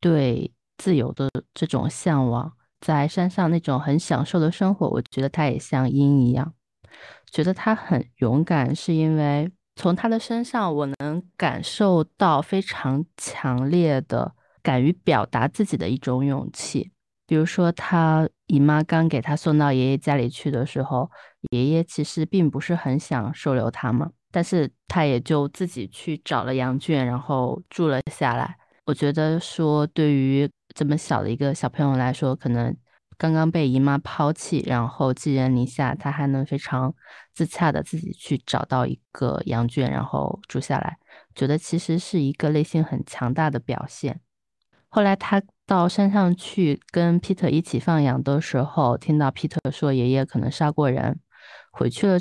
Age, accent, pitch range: 20-39, native, 130-165 Hz